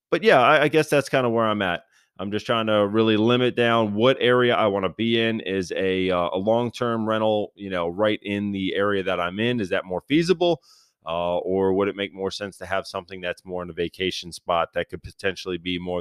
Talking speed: 245 wpm